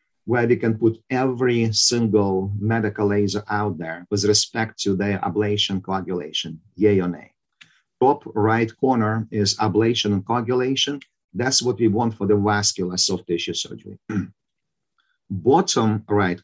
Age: 50-69